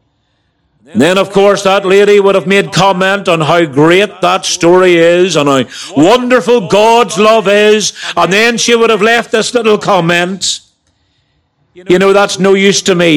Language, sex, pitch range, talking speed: English, male, 145-215 Hz, 170 wpm